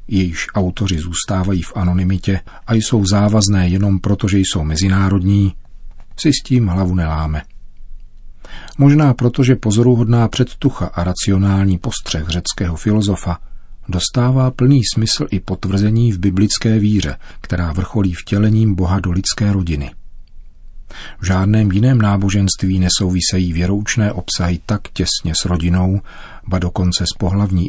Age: 40-59